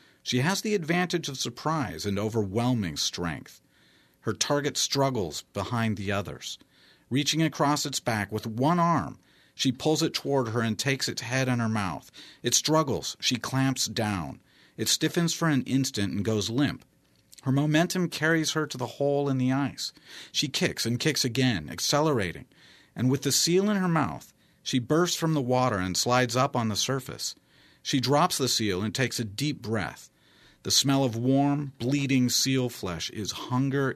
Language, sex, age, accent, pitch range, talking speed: English, male, 50-69, American, 115-150 Hz, 175 wpm